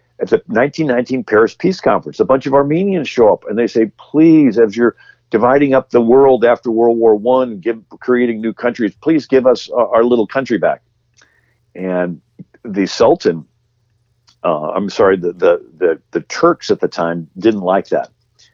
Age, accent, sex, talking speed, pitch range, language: 50-69, American, male, 170 wpm, 85-130 Hz, English